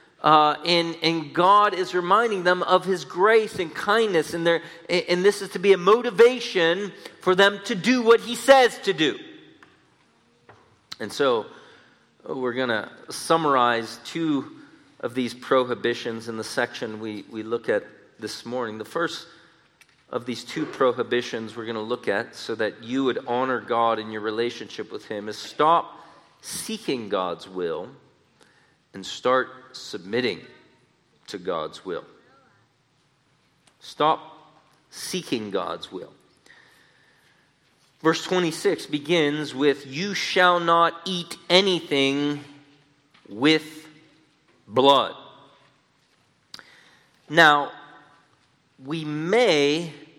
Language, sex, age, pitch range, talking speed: English, male, 40-59, 135-185 Hz, 120 wpm